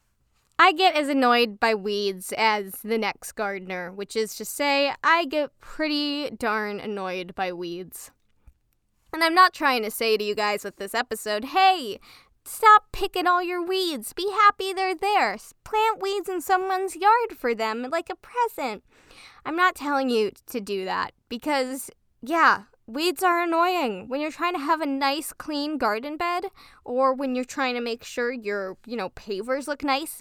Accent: American